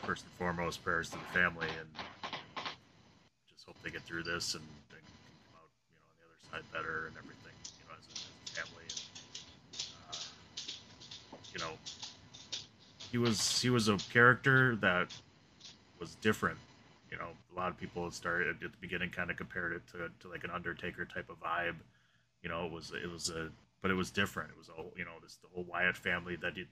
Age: 30-49